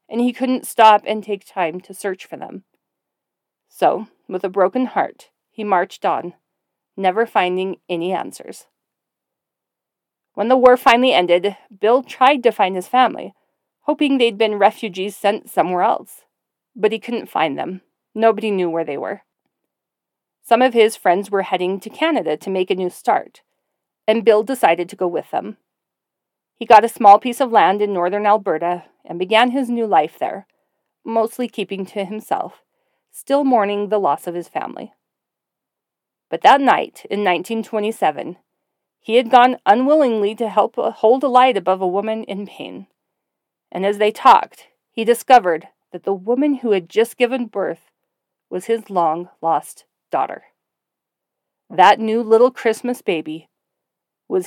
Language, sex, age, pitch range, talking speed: English, female, 40-59, 190-240 Hz, 155 wpm